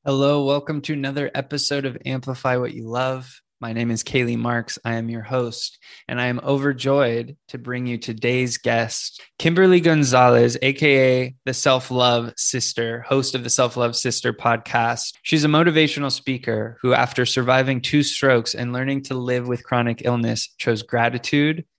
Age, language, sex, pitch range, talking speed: 20-39, English, male, 120-135 Hz, 160 wpm